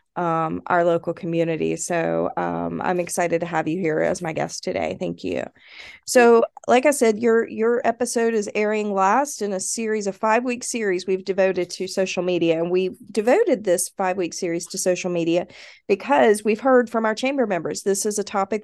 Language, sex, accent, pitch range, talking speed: English, female, American, 180-220 Hz, 190 wpm